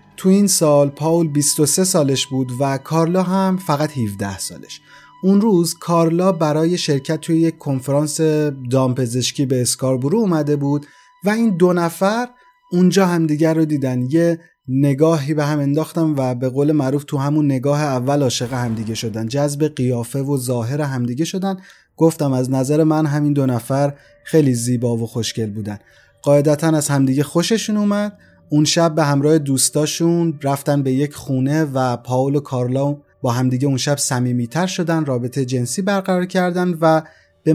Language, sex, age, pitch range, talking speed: Persian, male, 30-49, 130-165 Hz, 160 wpm